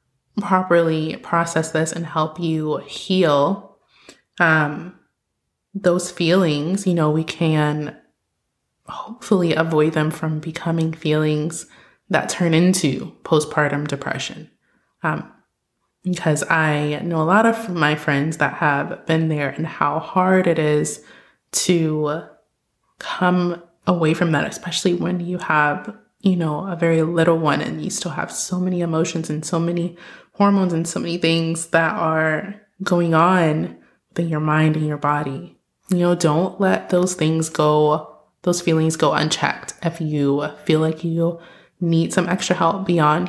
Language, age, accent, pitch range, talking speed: English, 20-39, American, 155-180 Hz, 145 wpm